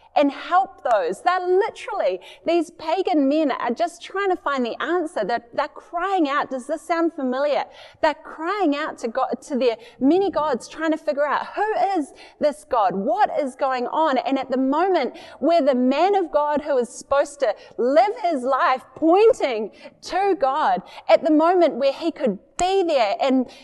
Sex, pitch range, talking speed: female, 265-360 Hz, 185 wpm